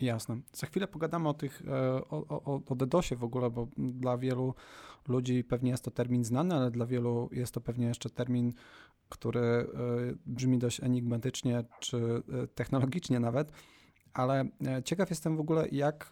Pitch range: 120-135 Hz